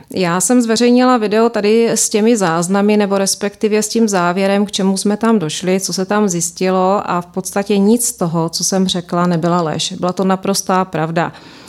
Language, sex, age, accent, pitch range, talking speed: Czech, female, 30-49, native, 175-195 Hz, 190 wpm